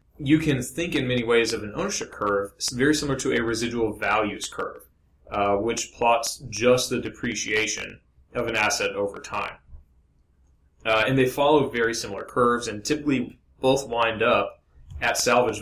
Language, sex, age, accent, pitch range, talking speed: English, male, 30-49, American, 105-130 Hz, 160 wpm